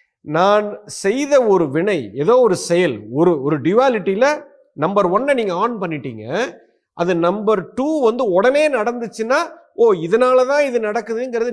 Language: Tamil